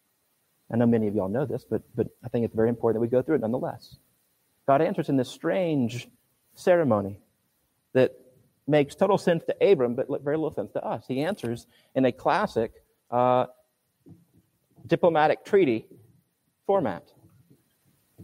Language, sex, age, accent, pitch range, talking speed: English, male, 40-59, American, 120-160 Hz, 155 wpm